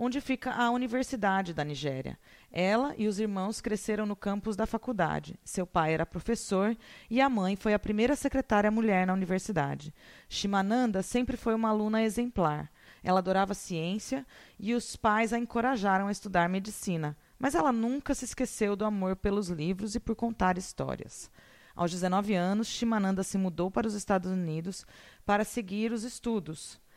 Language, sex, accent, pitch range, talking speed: Portuguese, female, Brazilian, 185-235 Hz, 160 wpm